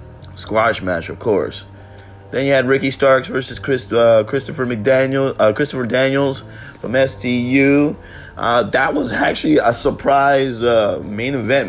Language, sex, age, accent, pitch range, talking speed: English, male, 30-49, American, 100-130 Hz, 145 wpm